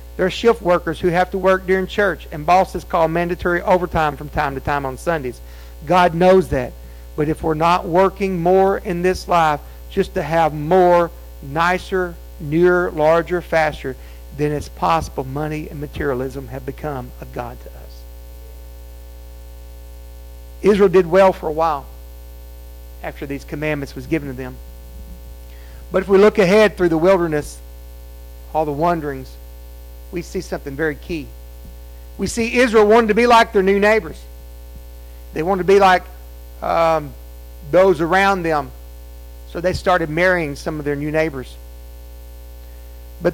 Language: English